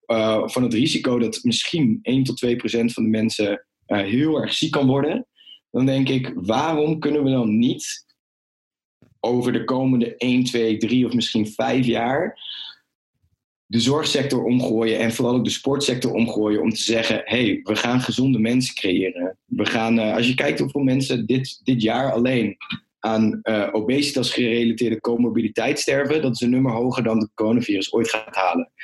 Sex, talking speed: male, 175 wpm